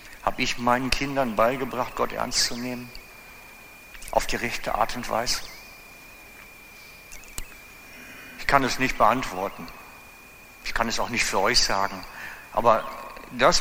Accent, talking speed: German, 130 wpm